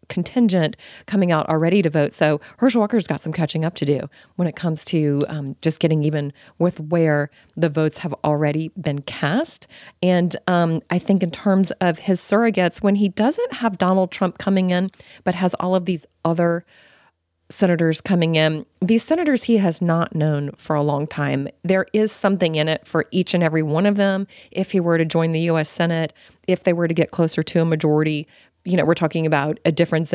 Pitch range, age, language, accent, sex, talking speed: 155-195 Hz, 30-49, English, American, female, 205 wpm